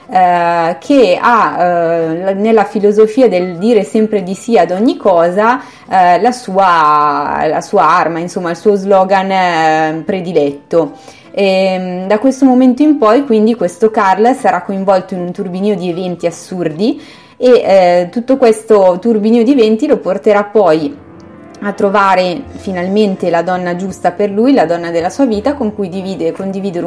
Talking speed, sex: 155 wpm, female